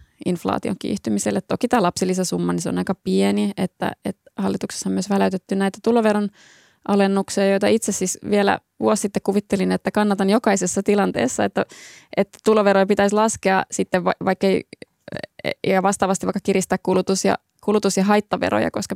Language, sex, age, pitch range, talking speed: Finnish, female, 20-39, 185-210 Hz, 150 wpm